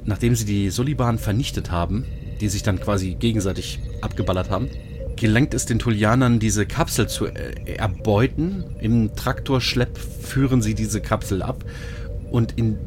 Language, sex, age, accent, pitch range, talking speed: German, male, 30-49, German, 105-125 Hz, 145 wpm